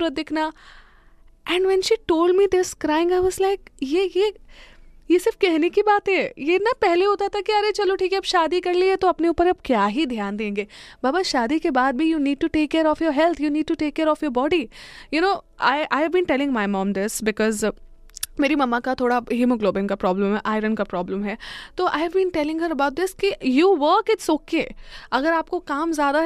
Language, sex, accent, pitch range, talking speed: Hindi, female, native, 230-340 Hz, 180 wpm